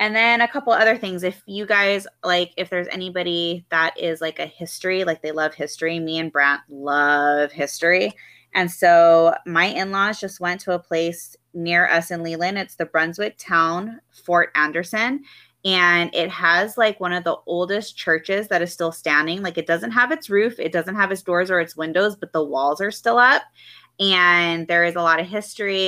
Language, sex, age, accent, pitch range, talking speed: English, female, 20-39, American, 160-190 Hz, 200 wpm